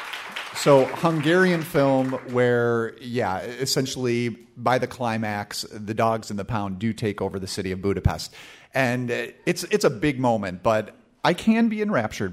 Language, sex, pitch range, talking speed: English, male, 100-125 Hz, 155 wpm